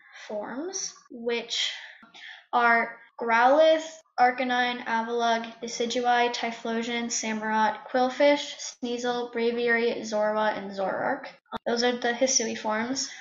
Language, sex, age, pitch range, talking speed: English, female, 10-29, 230-275 Hz, 90 wpm